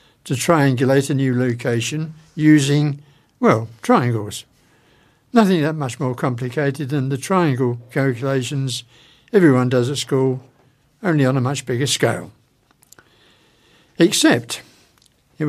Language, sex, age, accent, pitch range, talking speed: English, male, 60-79, British, 125-160 Hz, 110 wpm